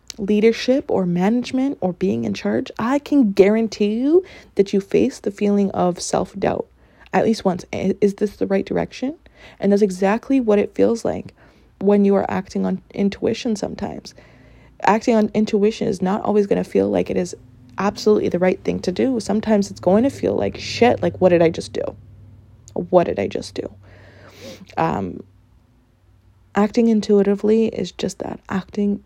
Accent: American